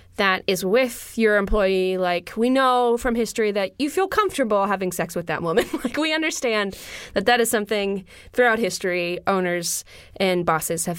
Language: English